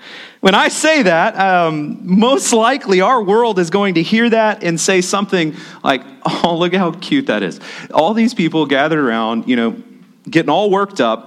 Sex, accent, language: male, American, English